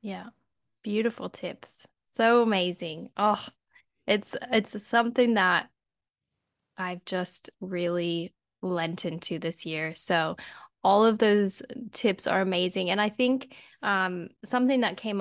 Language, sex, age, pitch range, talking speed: English, female, 10-29, 180-220 Hz, 120 wpm